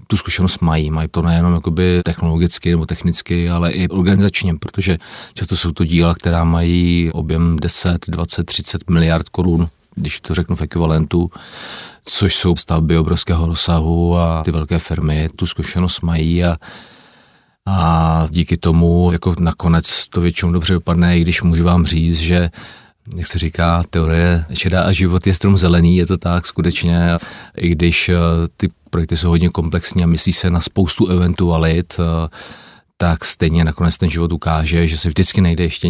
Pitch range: 85-90 Hz